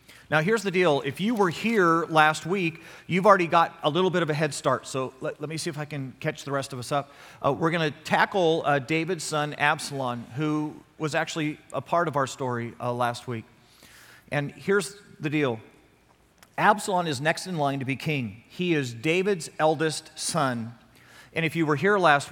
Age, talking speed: 40-59, 205 wpm